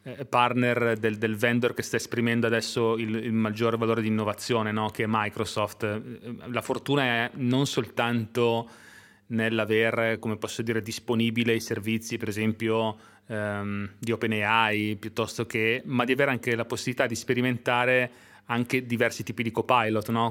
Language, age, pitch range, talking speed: Italian, 30-49, 110-120 Hz, 150 wpm